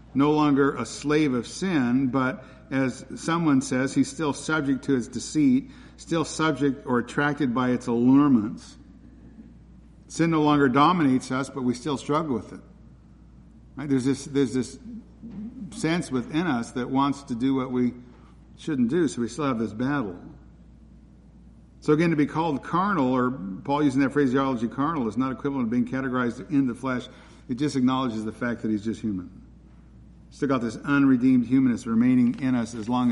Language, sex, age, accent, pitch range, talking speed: English, male, 50-69, American, 120-140 Hz, 175 wpm